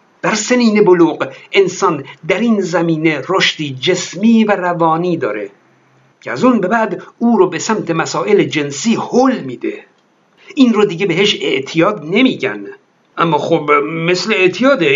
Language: Persian